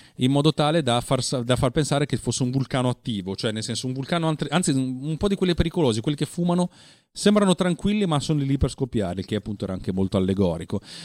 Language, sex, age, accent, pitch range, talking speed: Italian, male, 30-49, native, 110-145 Hz, 215 wpm